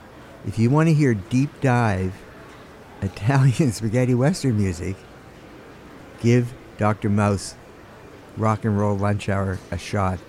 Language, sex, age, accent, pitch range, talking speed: English, male, 60-79, American, 100-130 Hz, 120 wpm